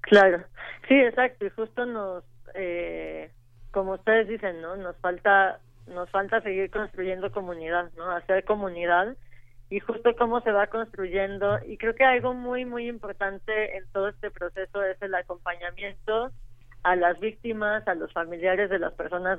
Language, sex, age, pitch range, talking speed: Spanish, female, 20-39, 175-200 Hz, 155 wpm